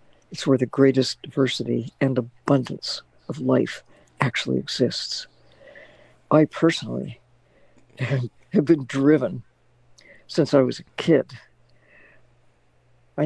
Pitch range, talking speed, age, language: 130-155 Hz, 100 wpm, 60-79, English